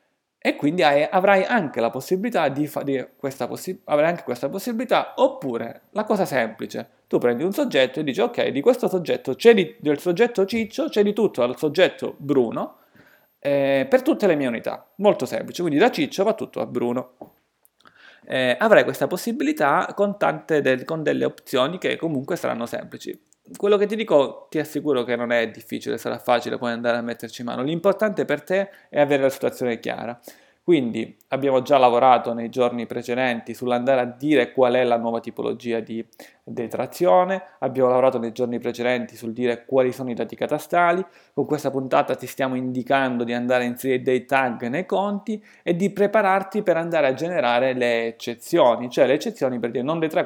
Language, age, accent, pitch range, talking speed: Italian, 30-49, native, 120-185 Hz, 180 wpm